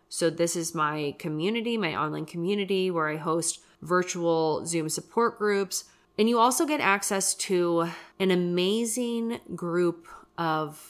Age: 20-39